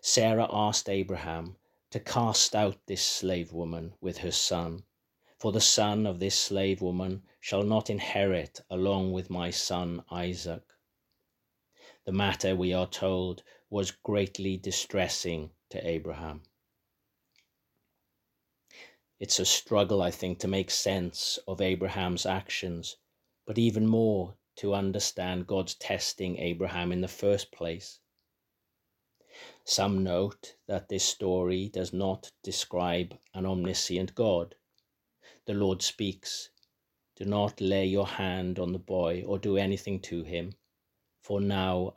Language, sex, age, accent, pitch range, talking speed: English, male, 40-59, British, 90-100 Hz, 125 wpm